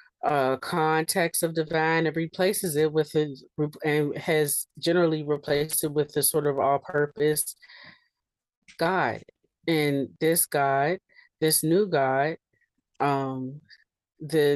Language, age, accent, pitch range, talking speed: English, 30-49, American, 140-160 Hz, 115 wpm